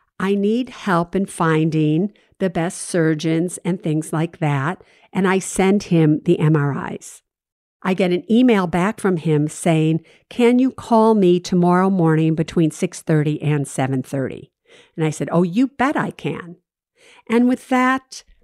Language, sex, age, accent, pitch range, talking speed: English, female, 50-69, American, 160-205 Hz, 155 wpm